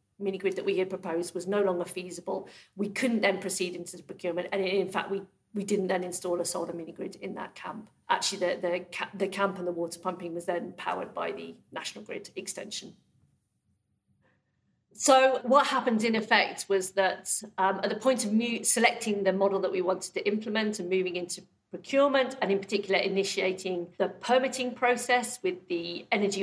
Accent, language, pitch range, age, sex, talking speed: British, English, 185-220 Hz, 50-69, female, 190 wpm